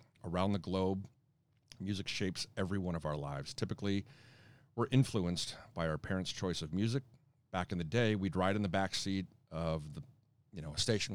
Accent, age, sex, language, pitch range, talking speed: American, 50-69, male, English, 85-115 Hz, 190 wpm